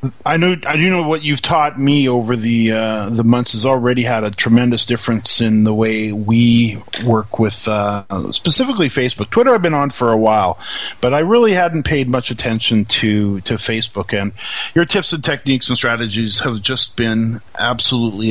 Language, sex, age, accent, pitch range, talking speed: English, male, 40-59, American, 115-145 Hz, 185 wpm